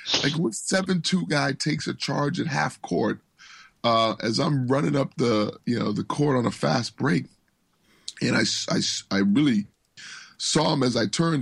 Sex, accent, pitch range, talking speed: male, American, 110-150 Hz, 185 wpm